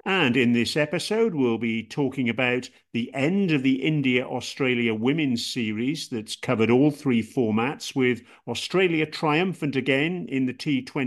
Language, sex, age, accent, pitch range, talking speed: English, male, 50-69, British, 120-150 Hz, 140 wpm